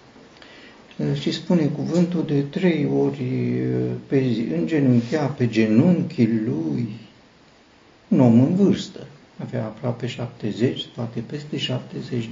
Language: Romanian